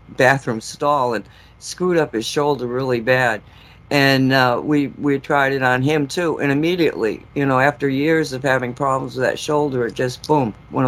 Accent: American